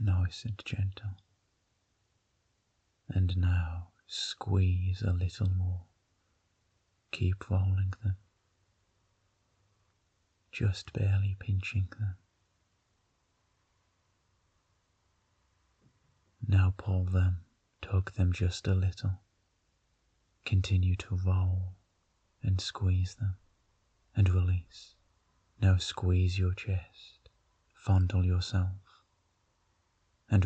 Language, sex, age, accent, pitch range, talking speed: English, male, 30-49, British, 90-100 Hz, 75 wpm